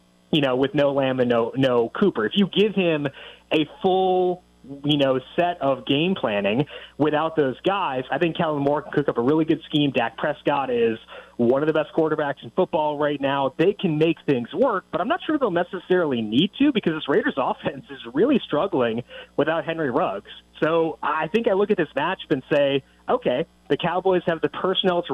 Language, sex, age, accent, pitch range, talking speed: English, male, 30-49, American, 140-175 Hz, 210 wpm